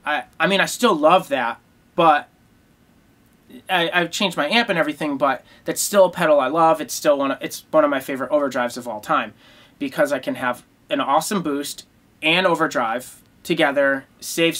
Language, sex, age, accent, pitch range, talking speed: English, male, 30-49, American, 150-205 Hz, 190 wpm